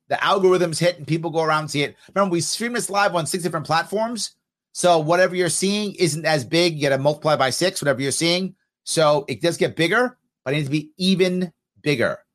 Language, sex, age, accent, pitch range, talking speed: English, male, 30-49, American, 120-160 Hz, 230 wpm